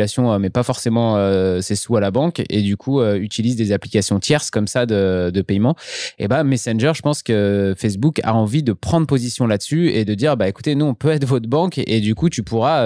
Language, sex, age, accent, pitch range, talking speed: French, male, 20-39, French, 105-130 Hz, 240 wpm